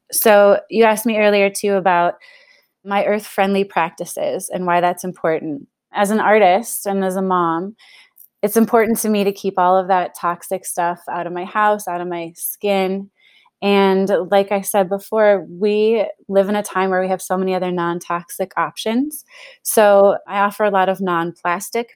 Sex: female